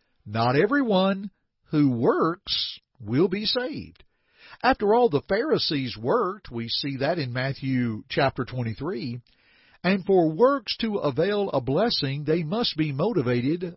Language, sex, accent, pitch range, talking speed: English, male, American, 125-195 Hz, 130 wpm